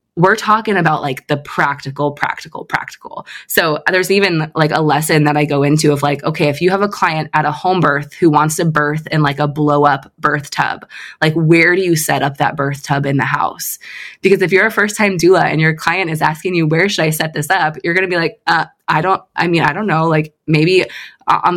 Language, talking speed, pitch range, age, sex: English, 245 wpm, 150-180 Hz, 20-39, female